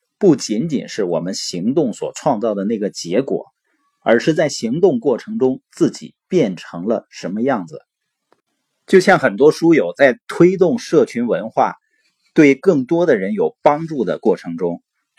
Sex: male